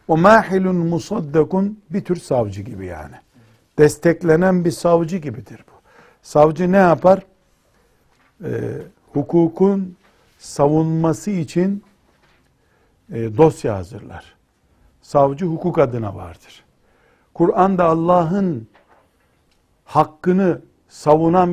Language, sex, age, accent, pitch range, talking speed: Turkish, male, 60-79, native, 135-180 Hz, 90 wpm